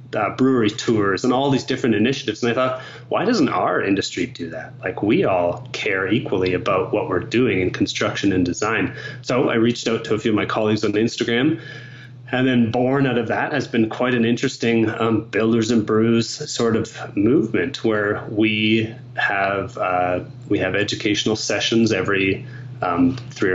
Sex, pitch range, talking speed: male, 110-125 Hz, 180 wpm